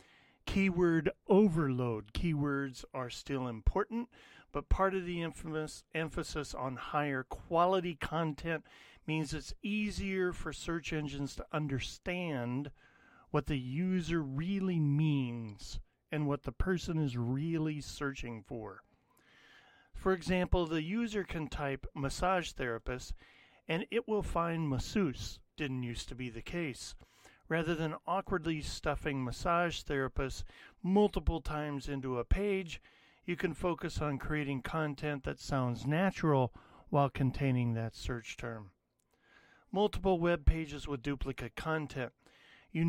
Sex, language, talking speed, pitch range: male, English, 120 wpm, 130-175 Hz